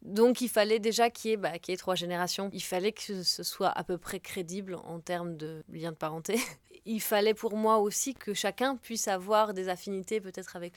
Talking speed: 235 wpm